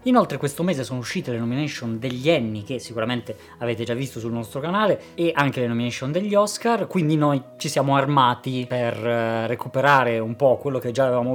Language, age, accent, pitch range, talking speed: Italian, 20-39, native, 125-160 Hz, 190 wpm